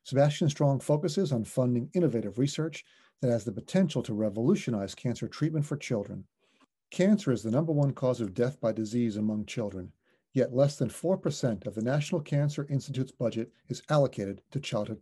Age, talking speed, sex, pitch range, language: 40-59, 170 wpm, male, 120-160 Hz, English